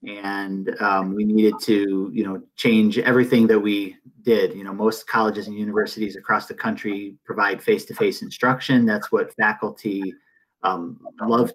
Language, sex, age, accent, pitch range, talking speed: English, male, 30-49, American, 105-125 Hz, 150 wpm